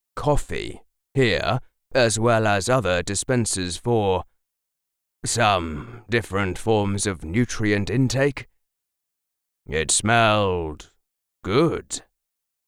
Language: English